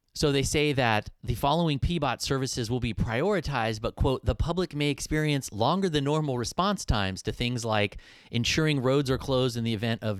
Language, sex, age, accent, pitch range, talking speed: English, male, 30-49, American, 100-130 Hz, 195 wpm